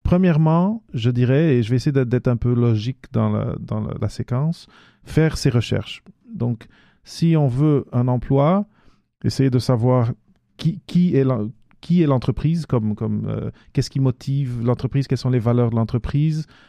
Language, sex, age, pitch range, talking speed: English, male, 40-59, 115-140 Hz, 175 wpm